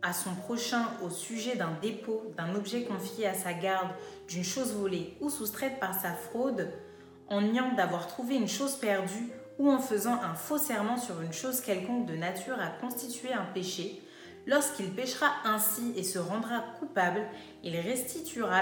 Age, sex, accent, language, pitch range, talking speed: 30-49, female, French, French, 175-240 Hz, 170 wpm